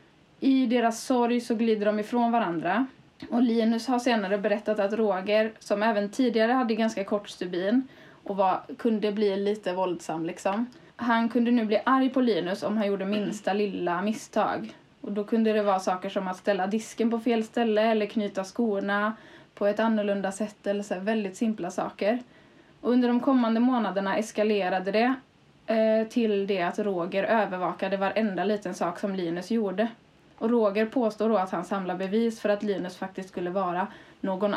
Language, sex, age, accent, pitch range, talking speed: Swedish, female, 20-39, native, 195-230 Hz, 175 wpm